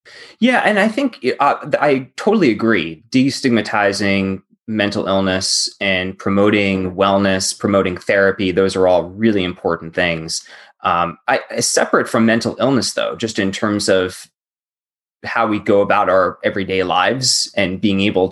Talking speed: 140 wpm